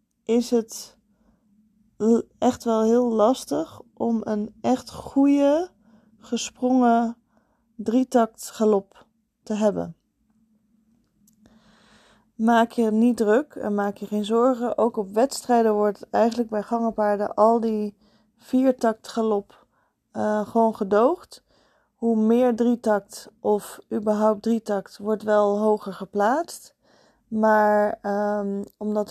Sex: female